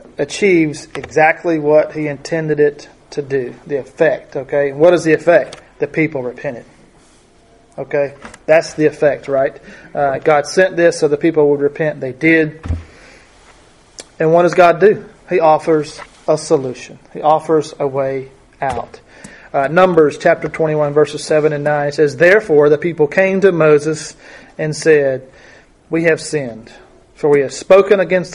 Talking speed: 155 wpm